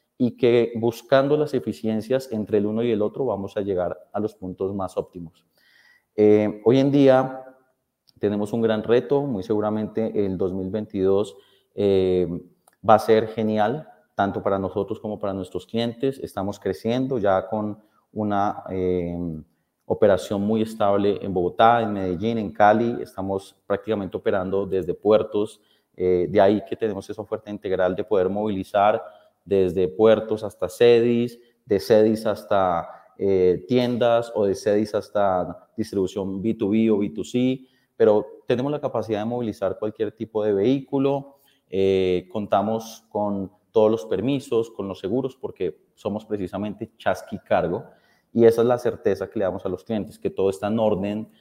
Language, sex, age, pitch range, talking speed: Spanish, male, 30-49, 95-115 Hz, 155 wpm